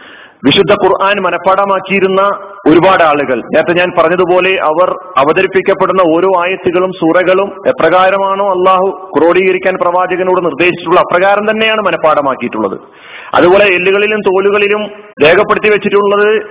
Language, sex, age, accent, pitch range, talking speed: Malayalam, male, 40-59, native, 175-200 Hz, 95 wpm